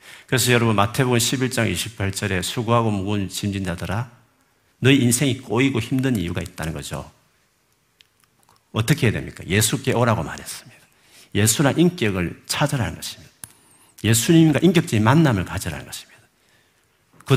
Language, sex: Korean, male